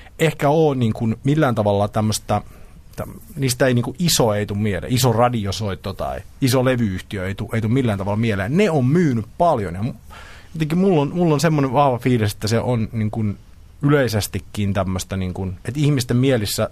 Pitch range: 105-135 Hz